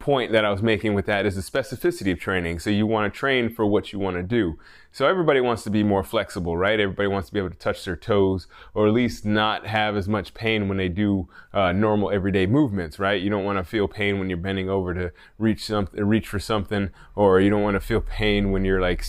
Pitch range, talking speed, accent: 95-110 Hz, 255 wpm, American